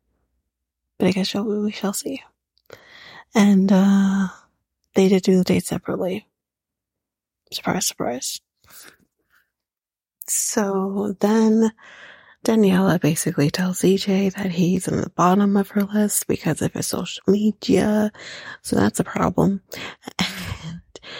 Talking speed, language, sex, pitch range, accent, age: 115 wpm, English, female, 165-210 Hz, American, 30-49